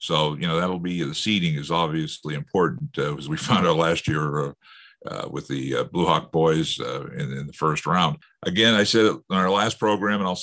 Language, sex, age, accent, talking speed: English, male, 50-69, American, 235 wpm